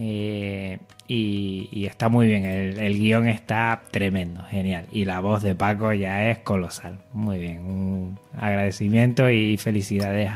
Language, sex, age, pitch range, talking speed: Spanish, male, 20-39, 105-130 Hz, 150 wpm